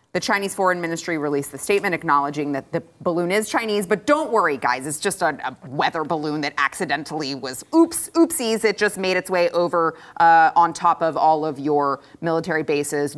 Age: 30-49